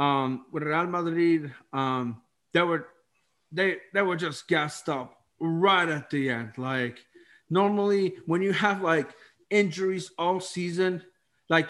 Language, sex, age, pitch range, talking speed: English, male, 30-49, 140-175 Hz, 125 wpm